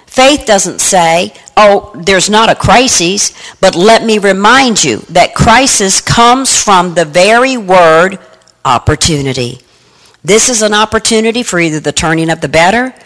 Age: 50-69